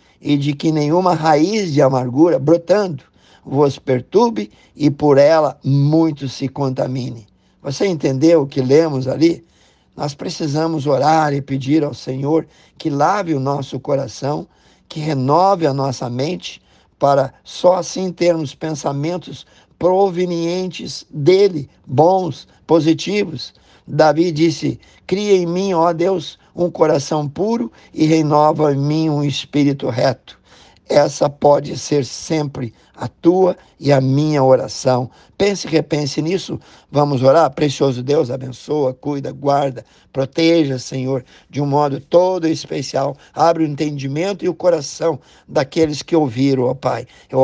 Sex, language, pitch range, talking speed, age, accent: male, Portuguese, 135-165 Hz, 135 wpm, 50-69, Brazilian